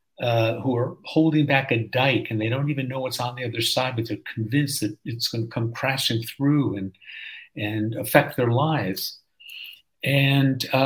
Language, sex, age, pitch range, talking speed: English, male, 50-69, 110-155 Hz, 180 wpm